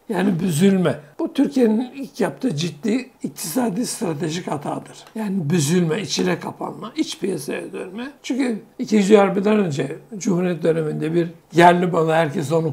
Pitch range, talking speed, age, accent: 165-235 Hz, 130 wpm, 60-79, native